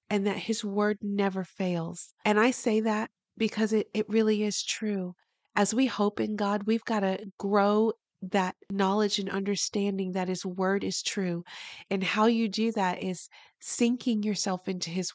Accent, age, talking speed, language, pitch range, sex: American, 30-49, 175 wpm, English, 180-210 Hz, female